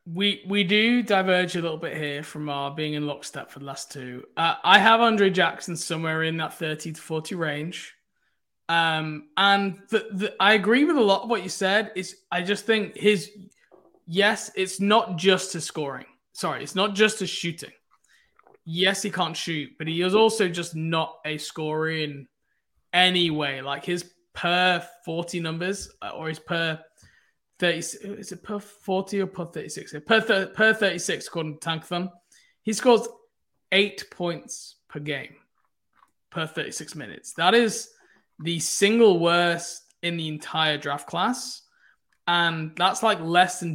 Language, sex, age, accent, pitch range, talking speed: English, male, 20-39, British, 160-200 Hz, 165 wpm